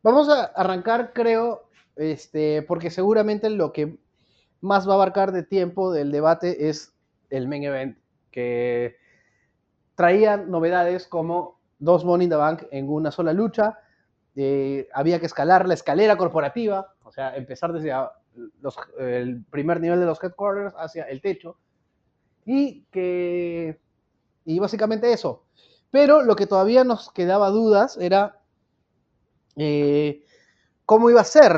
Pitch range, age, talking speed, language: 155-205 Hz, 30-49, 140 wpm, Spanish